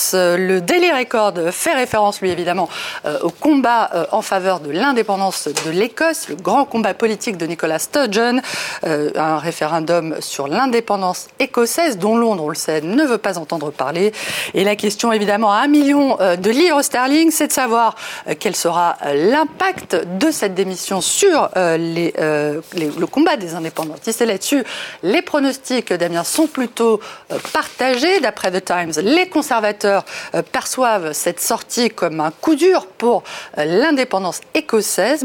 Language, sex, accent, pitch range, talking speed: French, female, French, 180-275 Hz, 160 wpm